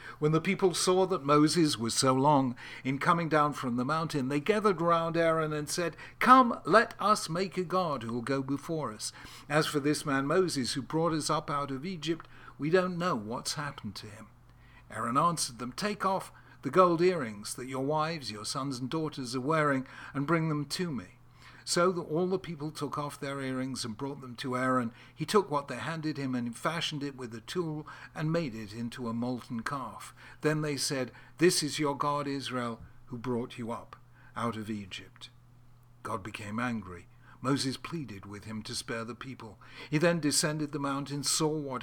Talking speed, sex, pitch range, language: 200 wpm, male, 125-155 Hz, English